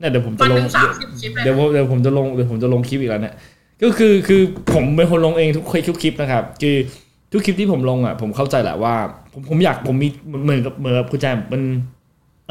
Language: Thai